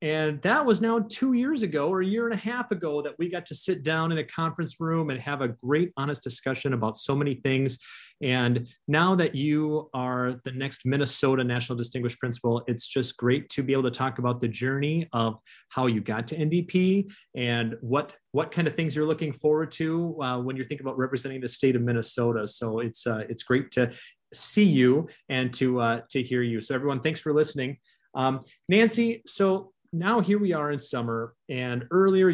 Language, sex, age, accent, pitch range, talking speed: English, male, 30-49, American, 125-160 Hz, 210 wpm